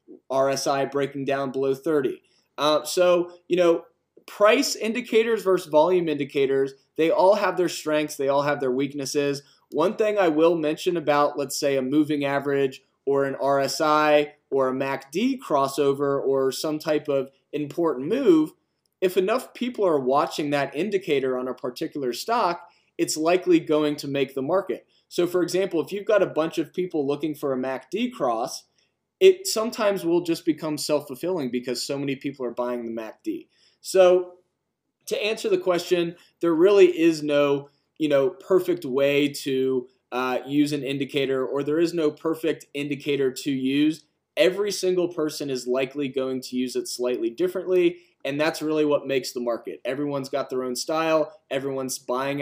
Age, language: 20-39, English